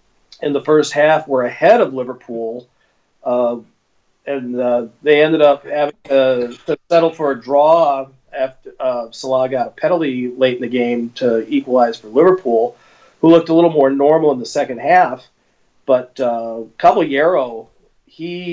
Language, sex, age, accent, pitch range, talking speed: English, male, 40-59, American, 125-155 Hz, 155 wpm